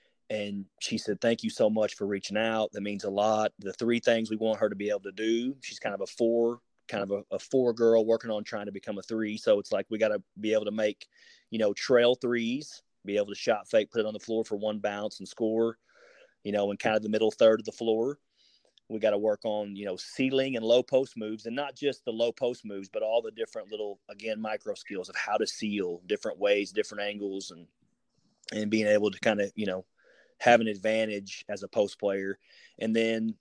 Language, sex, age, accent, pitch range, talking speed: English, male, 30-49, American, 100-120 Hz, 245 wpm